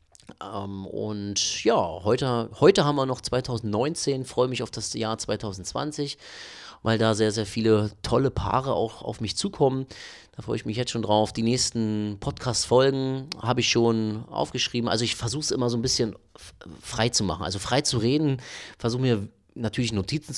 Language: German